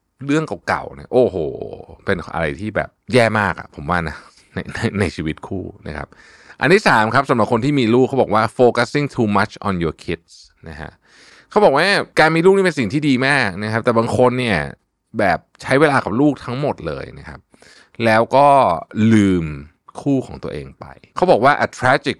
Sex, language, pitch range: male, Thai, 95-135 Hz